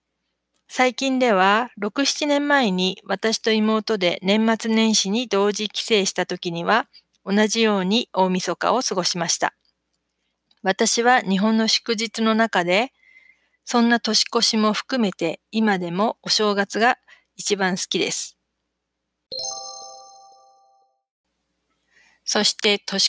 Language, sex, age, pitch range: Japanese, female, 40-59, 180-235 Hz